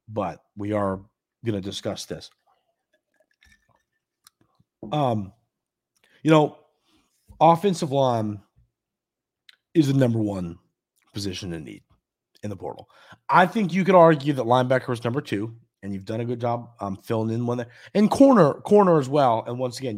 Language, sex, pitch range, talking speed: English, male, 105-150 Hz, 155 wpm